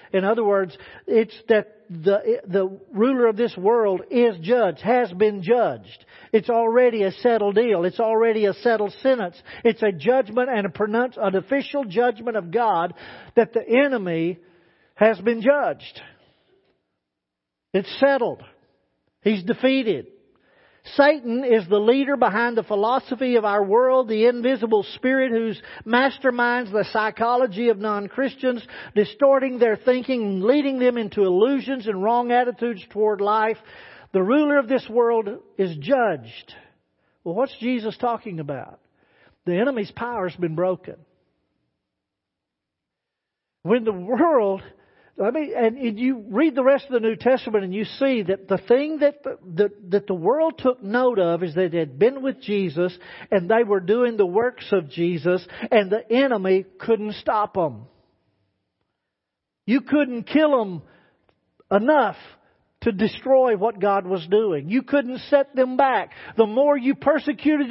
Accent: American